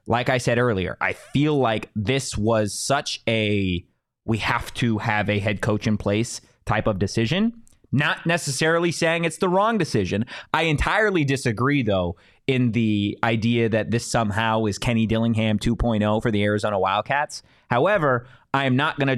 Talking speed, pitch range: 145 wpm, 115-160 Hz